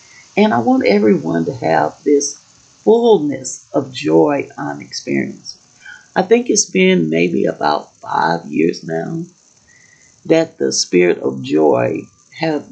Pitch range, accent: 130-185 Hz, American